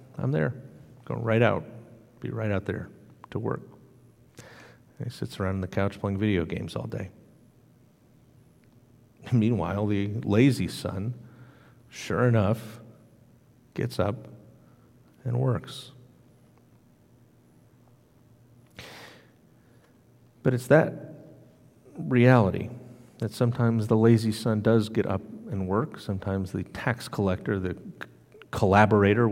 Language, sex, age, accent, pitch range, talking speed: English, male, 50-69, American, 105-125 Hz, 110 wpm